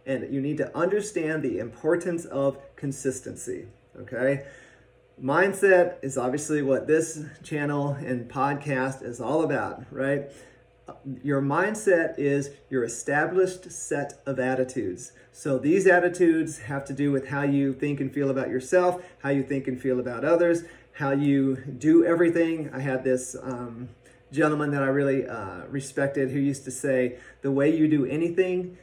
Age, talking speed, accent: 40-59, 155 wpm, American